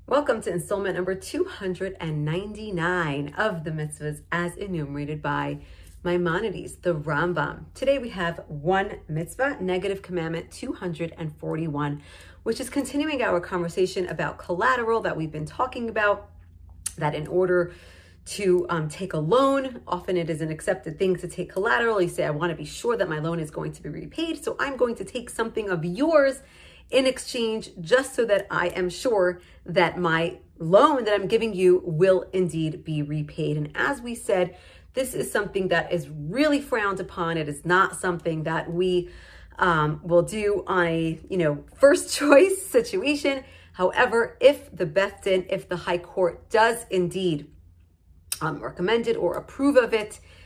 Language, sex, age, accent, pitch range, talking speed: English, female, 30-49, American, 160-215 Hz, 160 wpm